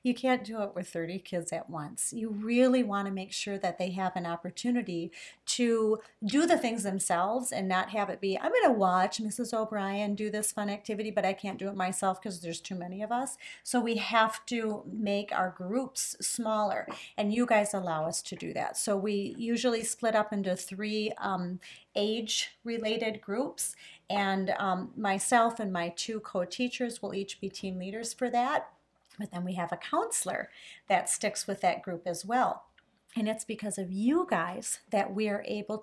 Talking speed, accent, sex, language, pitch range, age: 190 wpm, American, female, English, 185-230 Hz, 40-59